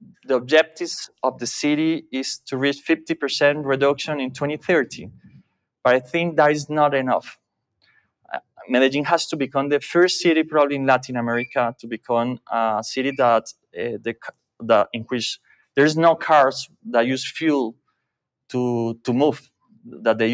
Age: 30-49